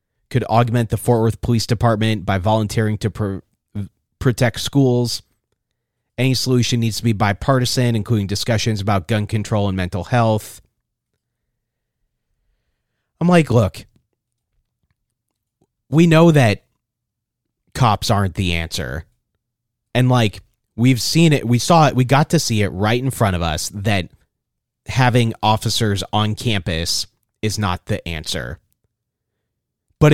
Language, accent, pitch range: English, American, 105-125 Hz